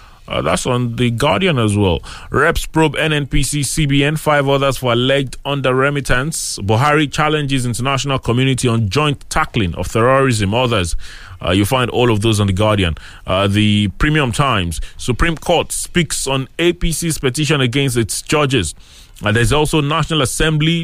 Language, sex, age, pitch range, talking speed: English, male, 30-49, 105-140 Hz, 155 wpm